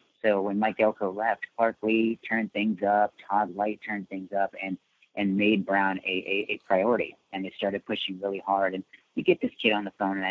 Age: 30-49